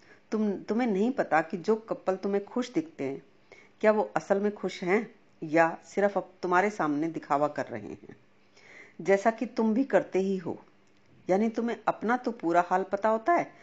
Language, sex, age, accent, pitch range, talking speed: Hindi, female, 50-69, native, 165-215 Hz, 130 wpm